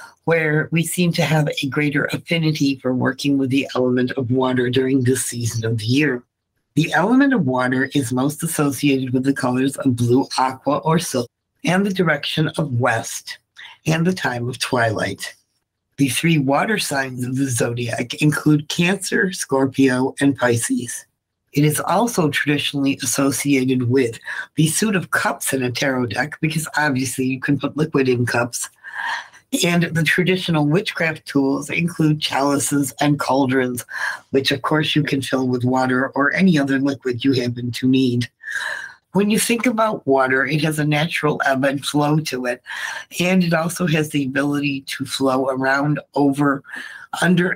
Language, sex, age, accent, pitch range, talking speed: English, female, 60-79, American, 130-155 Hz, 165 wpm